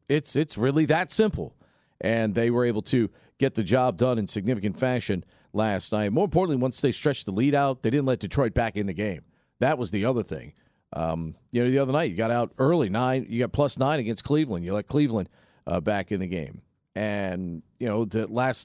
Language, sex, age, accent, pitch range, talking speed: English, male, 40-59, American, 100-130 Hz, 225 wpm